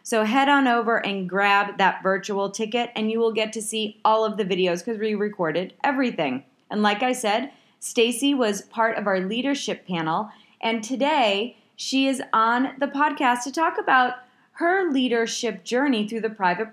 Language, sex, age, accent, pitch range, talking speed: English, female, 30-49, American, 205-260 Hz, 180 wpm